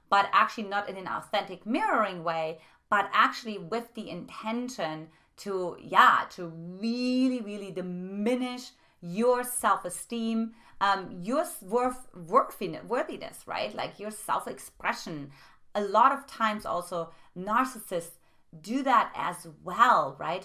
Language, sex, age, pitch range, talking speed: English, female, 30-49, 175-230 Hz, 115 wpm